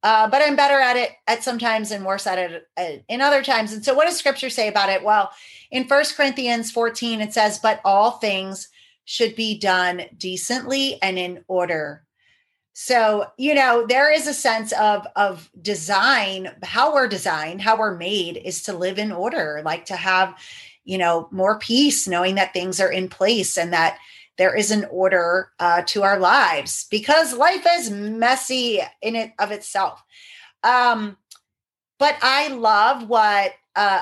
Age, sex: 30-49, female